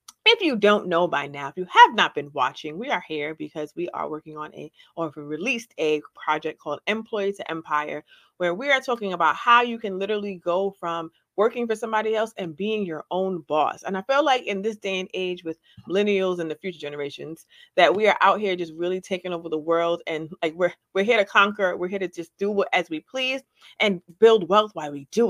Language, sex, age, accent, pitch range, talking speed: English, female, 30-49, American, 175-240 Hz, 235 wpm